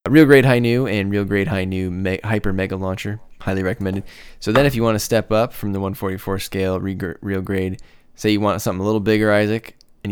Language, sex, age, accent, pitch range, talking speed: English, male, 10-29, American, 95-105 Hz, 220 wpm